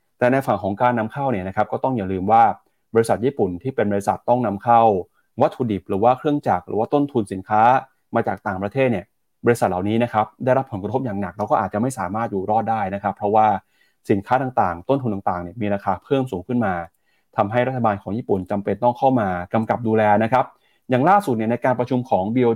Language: Thai